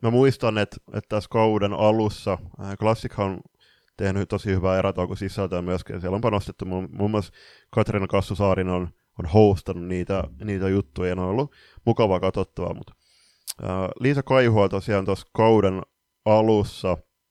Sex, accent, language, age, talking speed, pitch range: male, native, Finnish, 20-39, 140 wpm, 95-110 Hz